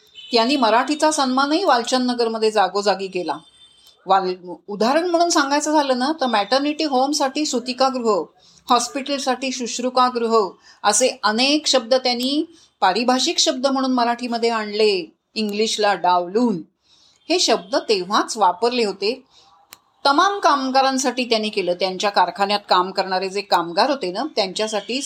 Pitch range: 205-260 Hz